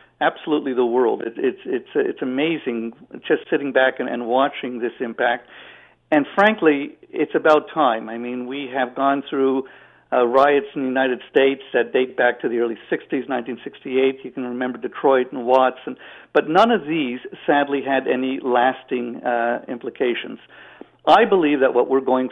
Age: 60-79